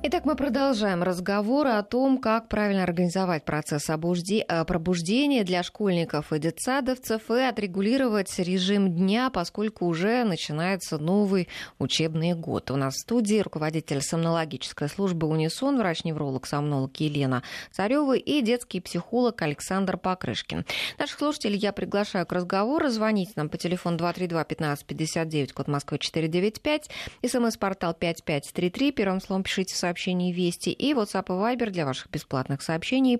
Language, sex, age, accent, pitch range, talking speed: Russian, female, 20-39, native, 170-225 Hz, 130 wpm